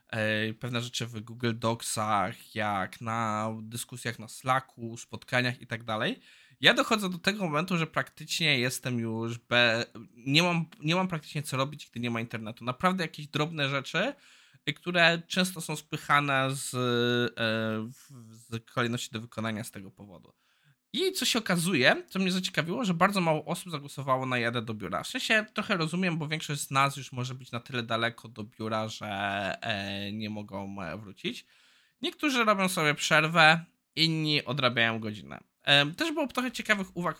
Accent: native